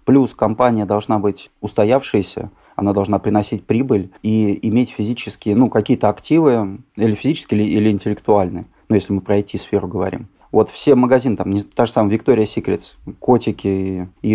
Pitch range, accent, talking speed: 100-120 Hz, native, 160 wpm